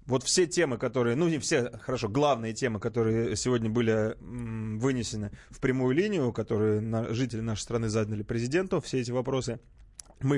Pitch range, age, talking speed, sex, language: 115-150 Hz, 20-39, 155 wpm, male, Russian